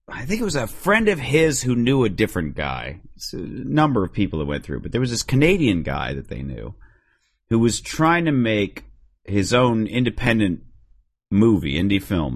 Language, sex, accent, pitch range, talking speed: English, male, American, 80-115 Hz, 195 wpm